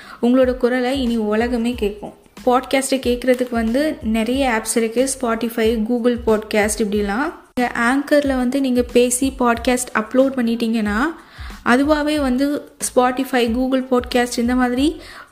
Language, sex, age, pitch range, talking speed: Tamil, female, 20-39, 225-255 Hz, 115 wpm